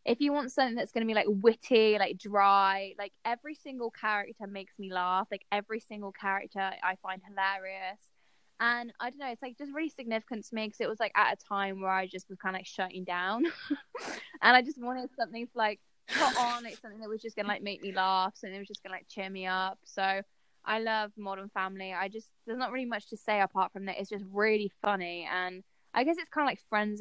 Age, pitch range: 10-29, 185-225 Hz